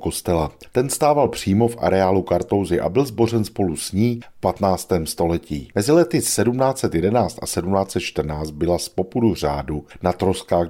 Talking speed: 150 wpm